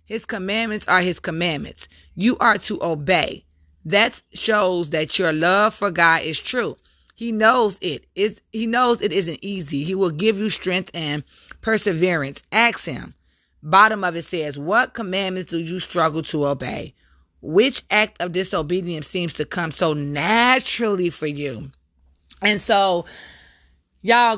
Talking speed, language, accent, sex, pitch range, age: 150 wpm, English, American, female, 150-195 Hz, 30-49